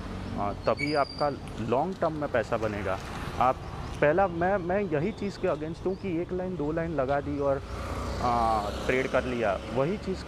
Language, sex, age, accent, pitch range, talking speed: Hindi, male, 30-49, native, 110-140 Hz, 170 wpm